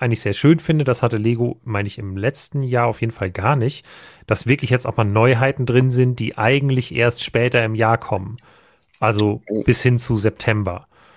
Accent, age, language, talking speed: German, 30-49, German, 200 wpm